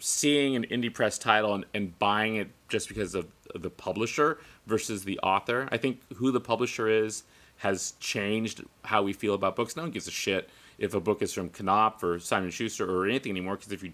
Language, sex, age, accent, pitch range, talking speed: English, male, 30-49, American, 100-130 Hz, 215 wpm